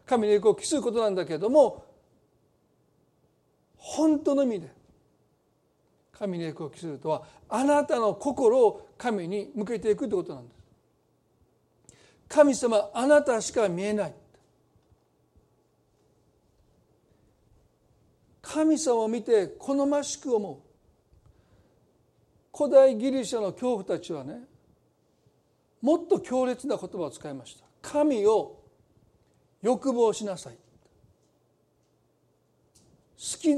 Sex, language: male, Japanese